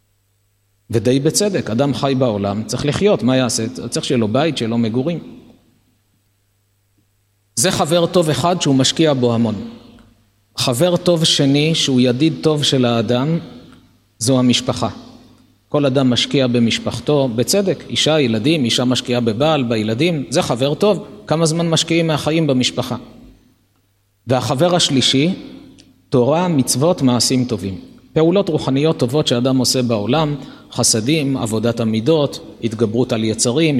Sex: male